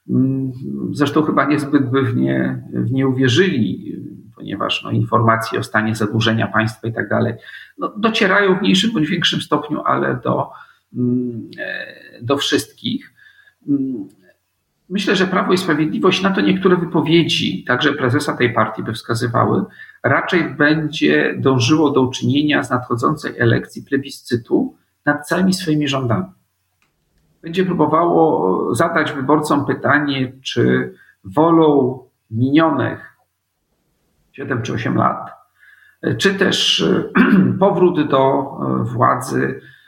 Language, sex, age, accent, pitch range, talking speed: Polish, male, 50-69, native, 115-160 Hz, 110 wpm